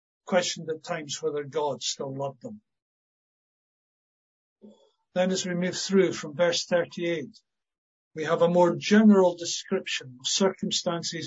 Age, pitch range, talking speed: 60-79, 145-195 Hz, 130 wpm